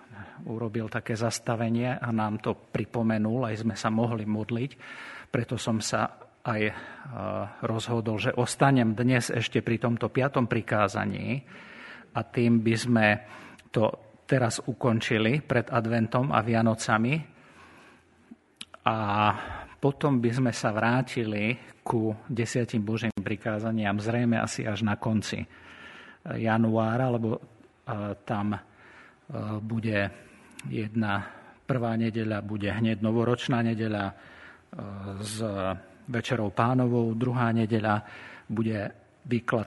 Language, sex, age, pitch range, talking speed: Slovak, male, 50-69, 110-120 Hz, 105 wpm